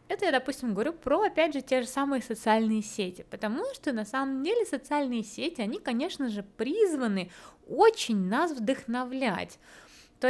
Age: 20-39